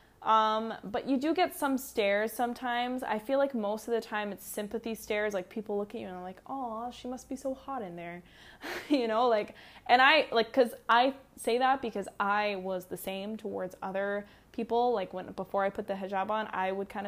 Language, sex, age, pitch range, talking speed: English, female, 10-29, 205-255 Hz, 220 wpm